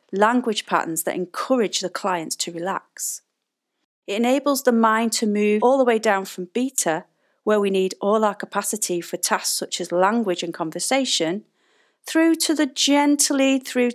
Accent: British